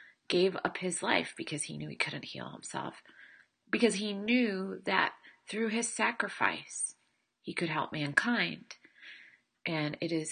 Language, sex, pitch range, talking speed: English, male, 150-195 Hz, 145 wpm